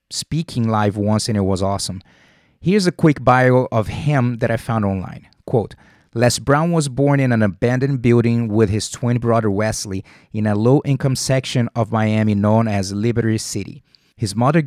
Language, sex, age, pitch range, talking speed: English, male, 30-49, 110-135 Hz, 175 wpm